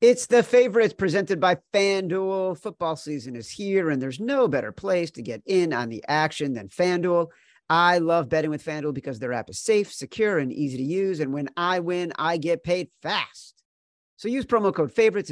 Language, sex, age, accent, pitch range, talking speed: English, male, 40-59, American, 140-180 Hz, 200 wpm